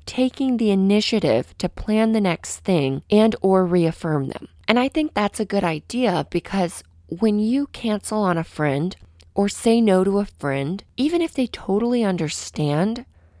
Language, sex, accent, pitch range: English, female, American, 150-215 Hz